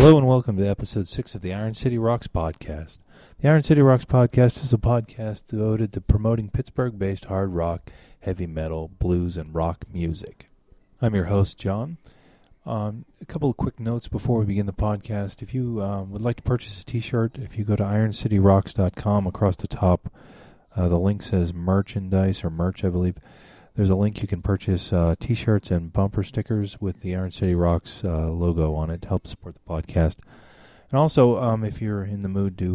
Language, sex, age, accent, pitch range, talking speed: English, male, 40-59, American, 85-110 Hz, 195 wpm